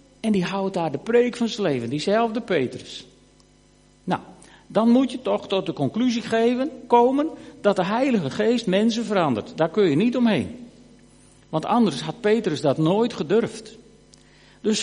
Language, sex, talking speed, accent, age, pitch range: Dutch, male, 160 wpm, Dutch, 60-79, 170-230 Hz